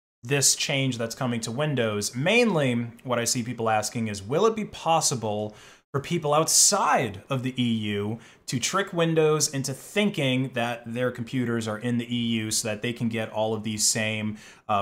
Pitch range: 110-140 Hz